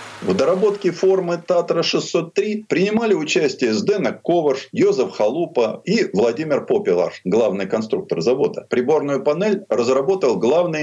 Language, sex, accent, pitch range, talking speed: Russian, male, native, 130-215 Hz, 110 wpm